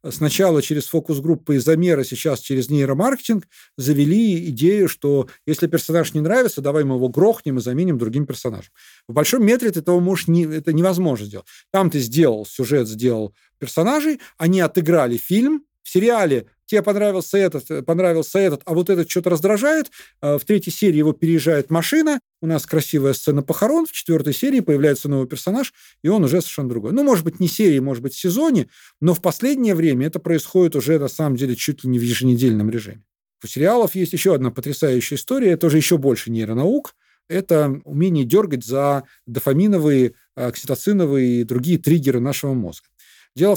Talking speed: 170 wpm